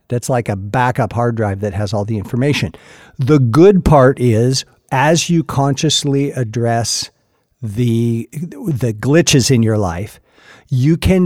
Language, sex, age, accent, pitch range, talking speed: English, male, 50-69, American, 110-140 Hz, 145 wpm